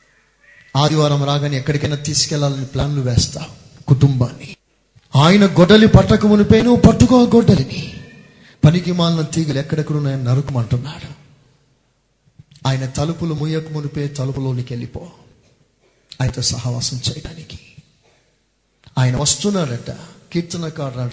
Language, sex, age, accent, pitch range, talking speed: Telugu, male, 30-49, native, 135-200 Hz, 90 wpm